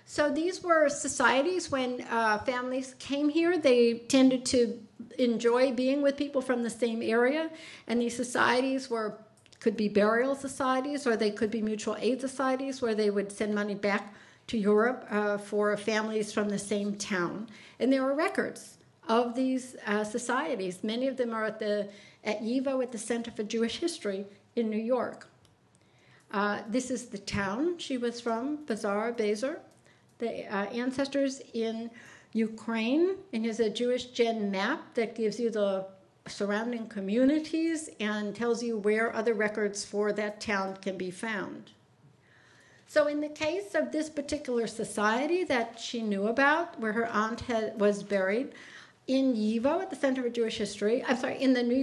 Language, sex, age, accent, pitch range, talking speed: English, female, 60-79, American, 215-260 Hz, 165 wpm